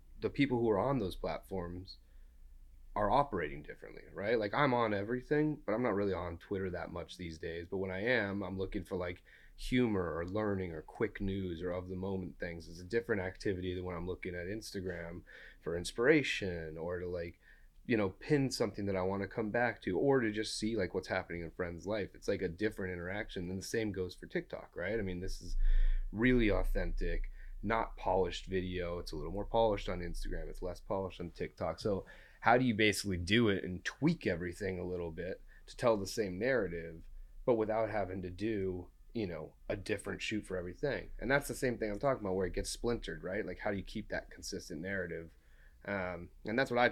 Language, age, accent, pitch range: English, 30-49, American, 90-110 Hz